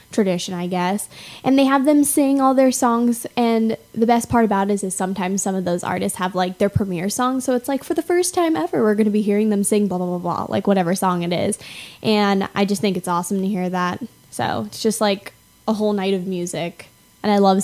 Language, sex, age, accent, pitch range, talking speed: English, female, 10-29, American, 190-230 Hz, 250 wpm